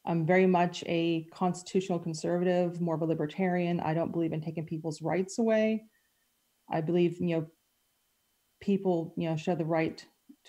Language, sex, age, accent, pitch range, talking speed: English, female, 30-49, American, 165-185 Hz, 165 wpm